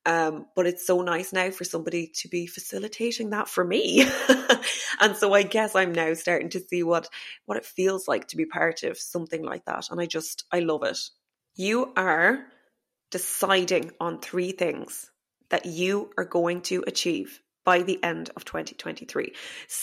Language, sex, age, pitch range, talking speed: English, female, 20-39, 175-225 Hz, 175 wpm